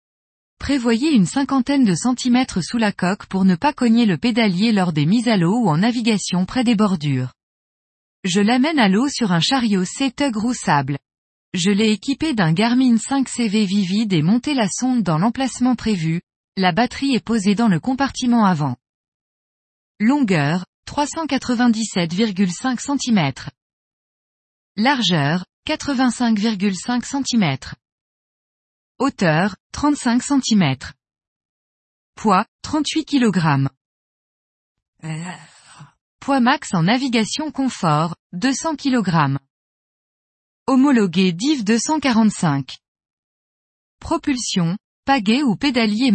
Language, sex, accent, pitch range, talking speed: French, female, French, 175-255 Hz, 105 wpm